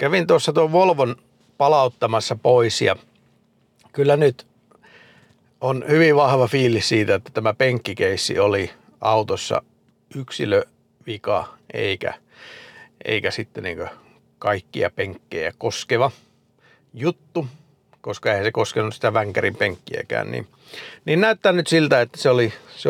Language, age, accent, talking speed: Finnish, 50-69, native, 115 wpm